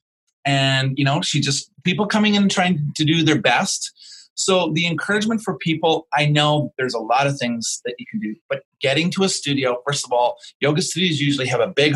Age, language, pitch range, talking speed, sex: 30-49, English, 130-160 Hz, 215 wpm, male